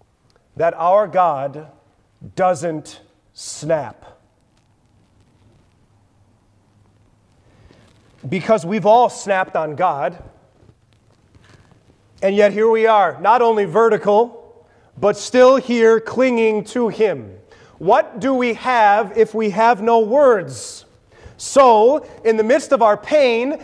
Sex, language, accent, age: male, English, American, 30-49